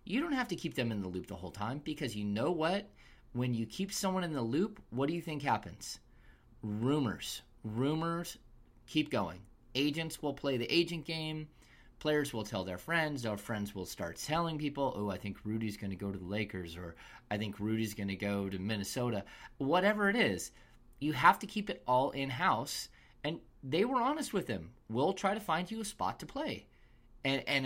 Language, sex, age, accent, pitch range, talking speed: English, male, 30-49, American, 110-150 Hz, 205 wpm